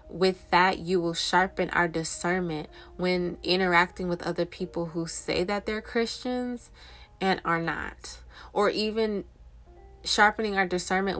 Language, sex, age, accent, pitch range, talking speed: English, female, 20-39, American, 165-190 Hz, 135 wpm